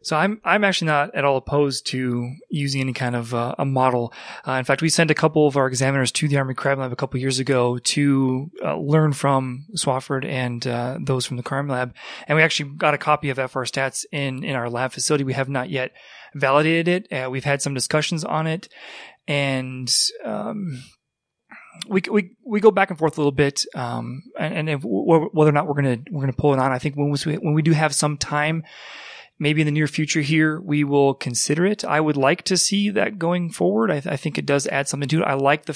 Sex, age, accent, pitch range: male, 30-49, American, 135-160 Hz